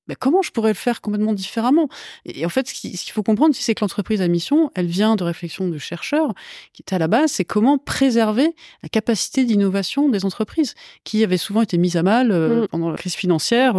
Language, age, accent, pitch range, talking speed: French, 30-49, French, 170-235 Hz, 220 wpm